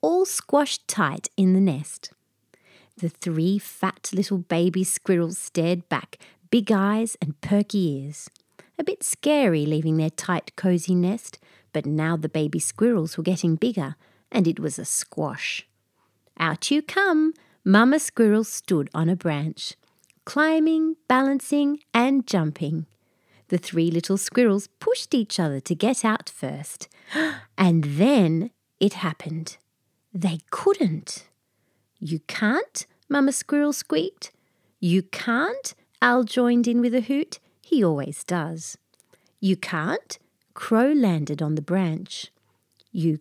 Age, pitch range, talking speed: 30-49, 170-260 Hz, 130 wpm